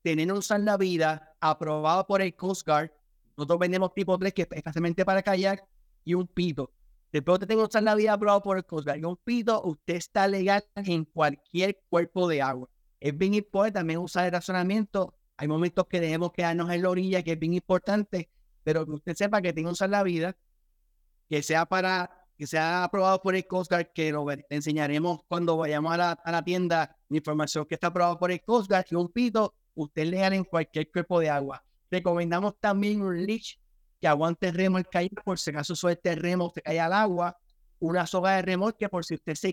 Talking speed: 210 wpm